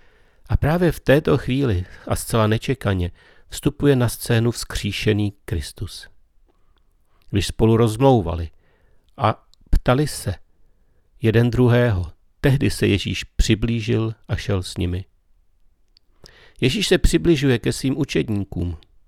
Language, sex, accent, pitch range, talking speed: Czech, male, native, 90-120 Hz, 110 wpm